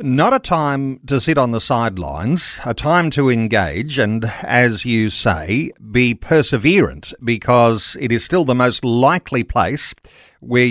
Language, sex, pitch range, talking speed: English, male, 115-140 Hz, 150 wpm